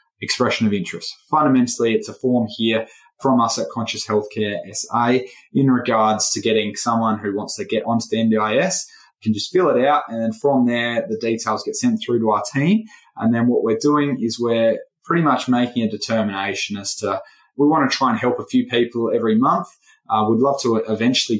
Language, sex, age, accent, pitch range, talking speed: English, male, 20-39, Australian, 110-140 Hz, 205 wpm